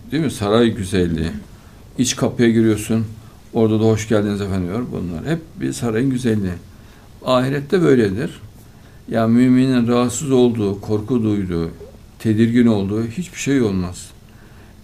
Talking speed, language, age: 125 wpm, Turkish, 60-79